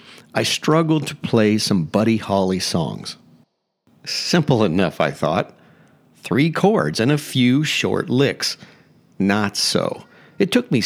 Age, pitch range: 50-69, 110-145 Hz